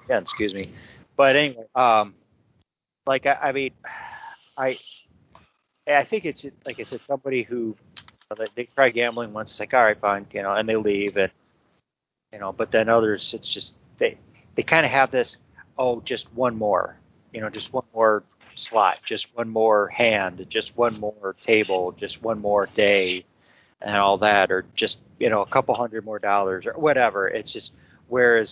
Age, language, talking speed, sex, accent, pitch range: 40-59, English, 185 wpm, male, American, 100-120 Hz